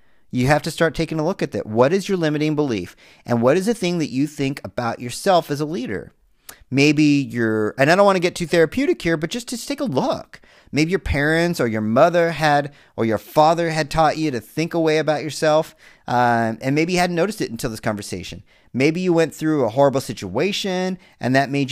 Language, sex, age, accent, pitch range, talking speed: English, male, 40-59, American, 120-165 Hz, 225 wpm